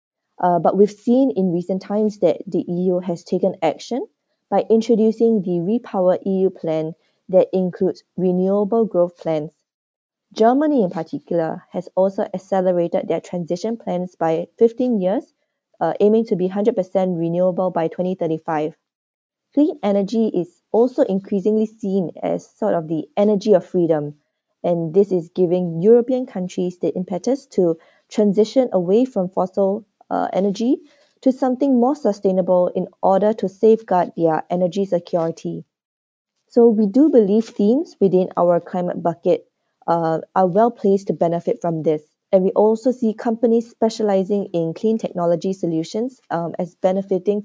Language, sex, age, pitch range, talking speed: English, female, 20-39, 175-220 Hz, 145 wpm